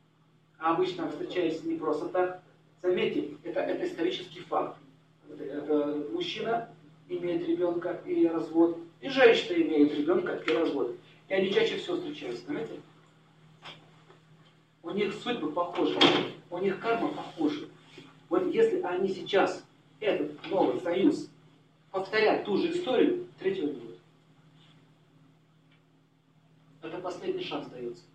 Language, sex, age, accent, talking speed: Russian, male, 40-59, native, 115 wpm